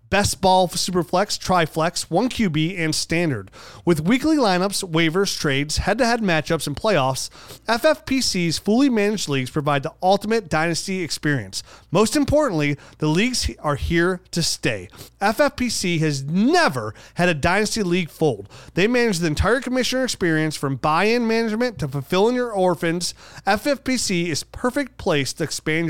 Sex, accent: male, American